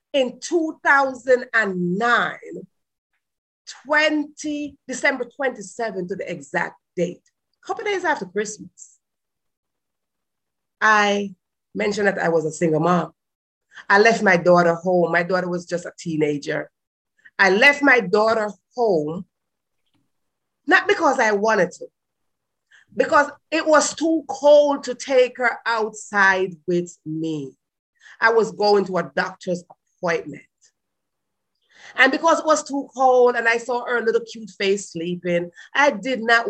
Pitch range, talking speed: 180-255 Hz, 125 wpm